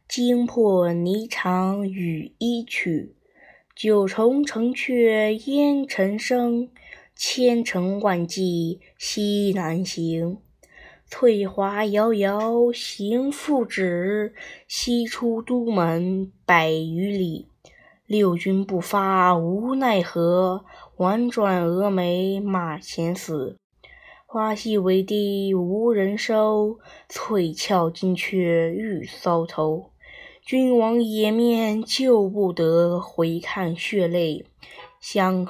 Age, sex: 20-39, female